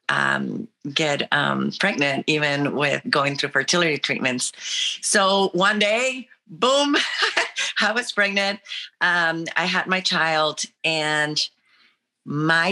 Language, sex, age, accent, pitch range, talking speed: English, female, 30-49, American, 150-185 Hz, 115 wpm